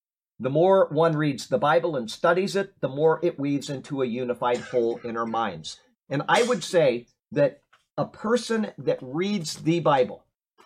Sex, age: male, 50-69